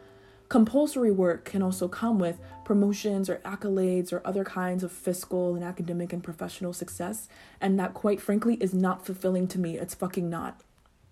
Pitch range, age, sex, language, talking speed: 185-215 Hz, 20-39, female, English, 165 wpm